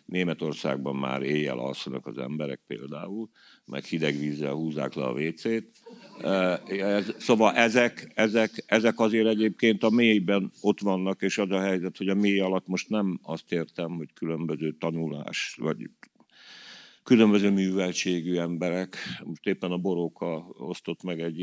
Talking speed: 135 wpm